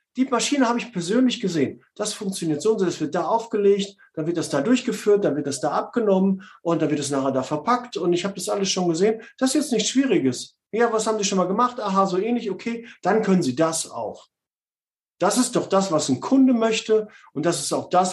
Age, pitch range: 50-69, 130-200 Hz